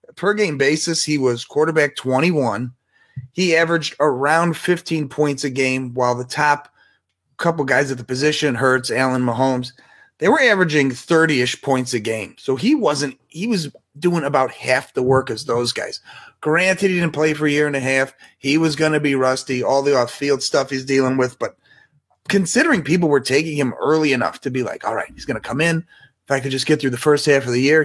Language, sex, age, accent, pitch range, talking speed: English, male, 30-49, American, 135-175 Hz, 215 wpm